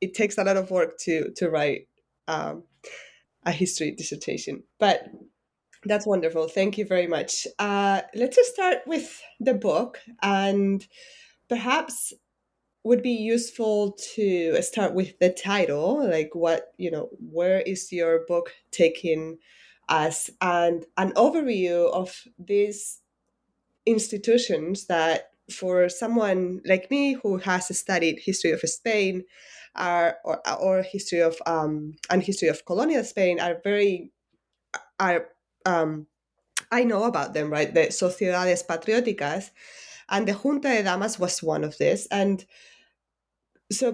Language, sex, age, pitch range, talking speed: English, female, 20-39, 165-220 Hz, 135 wpm